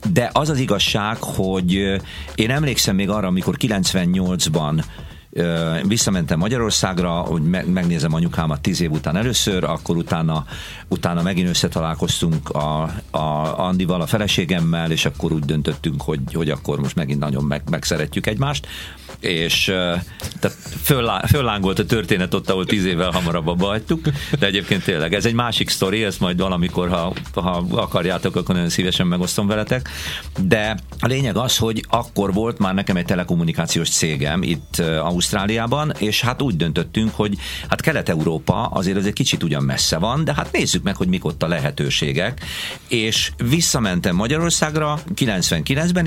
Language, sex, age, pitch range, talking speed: Hungarian, male, 50-69, 80-115 Hz, 145 wpm